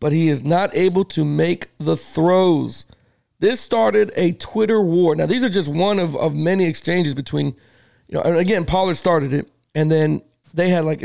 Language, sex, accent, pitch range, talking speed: English, male, American, 145-185 Hz, 195 wpm